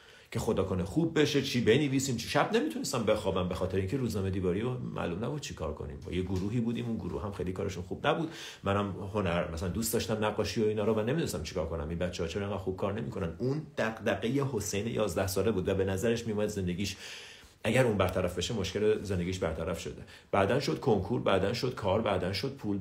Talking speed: 210 wpm